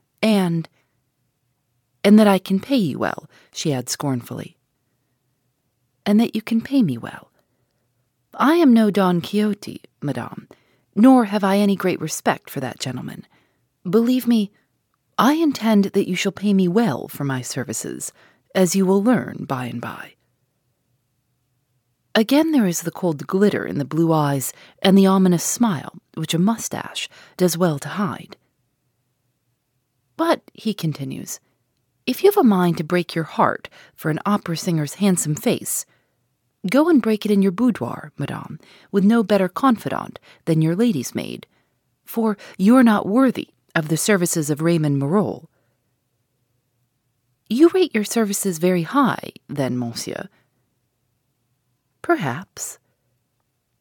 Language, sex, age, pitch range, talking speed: English, female, 30-49, 130-210 Hz, 145 wpm